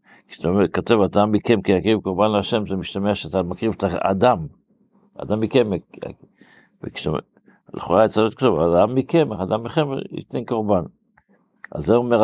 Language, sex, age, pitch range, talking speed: Hebrew, male, 60-79, 95-115 Hz, 155 wpm